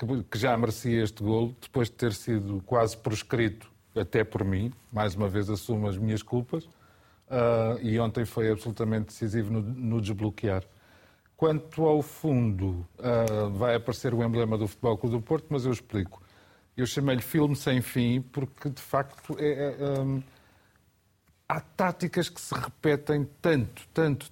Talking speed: 145 wpm